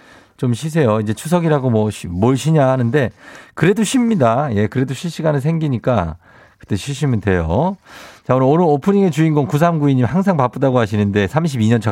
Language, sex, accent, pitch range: Korean, male, native, 105-150 Hz